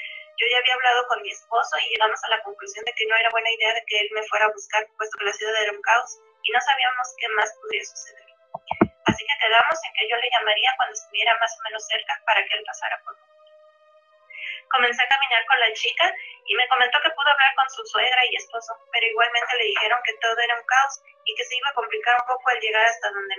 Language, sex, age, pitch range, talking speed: Spanish, female, 20-39, 220-310 Hz, 250 wpm